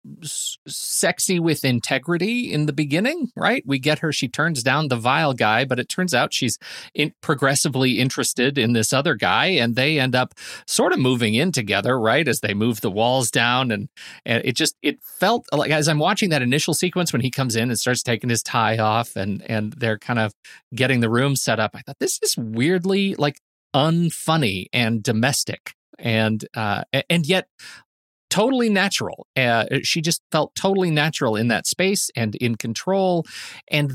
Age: 30-49